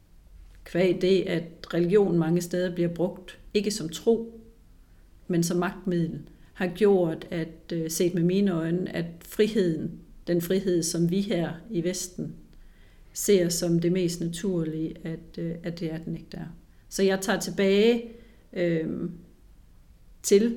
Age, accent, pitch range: 40-59, native, 170-195 Hz